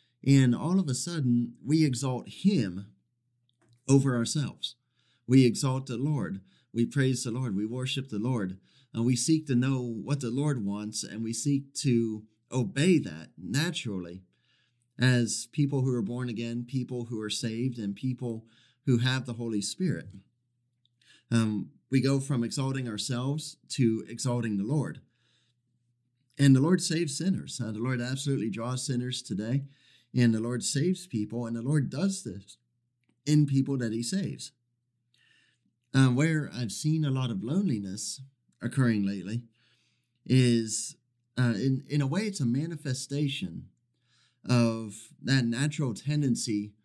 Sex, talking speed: male, 145 wpm